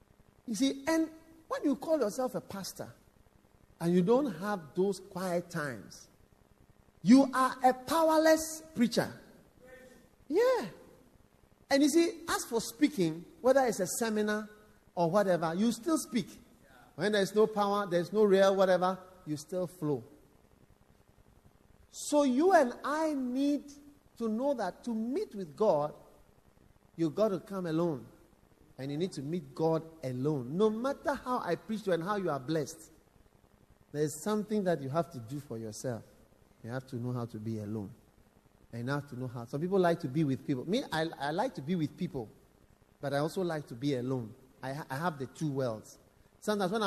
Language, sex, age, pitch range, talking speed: English, male, 50-69, 140-225 Hz, 175 wpm